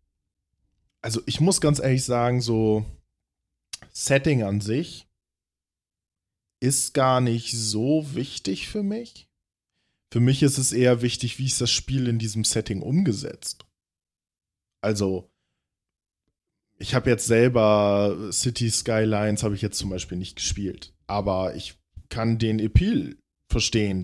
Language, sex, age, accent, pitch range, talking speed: German, male, 20-39, German, 95-120 Hz, 125 wpm